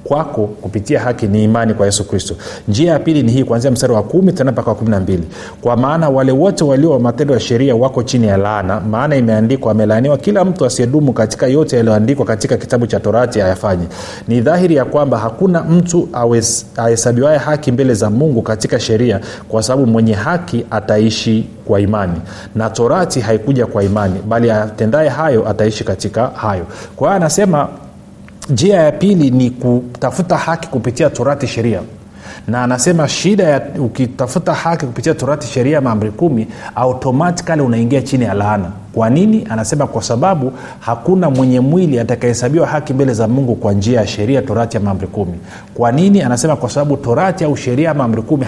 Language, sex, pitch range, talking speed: Swahili, male, 110-145 Hz, 165 wpm